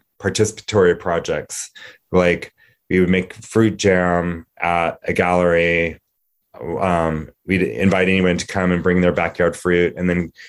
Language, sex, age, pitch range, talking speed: English, male, 20-39, 85-100 Hz, 135 wpm